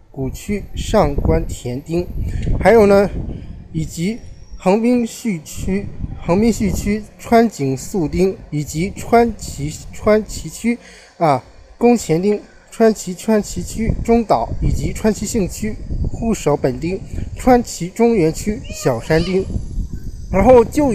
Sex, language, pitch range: male, Chinese, 150-220 Hz